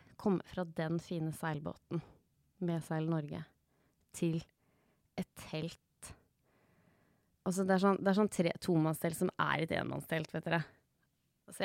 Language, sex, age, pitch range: English, female, 20-39, 165-210 Hz